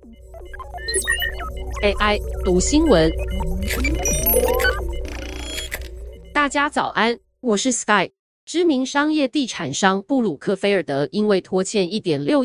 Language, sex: Chinese, female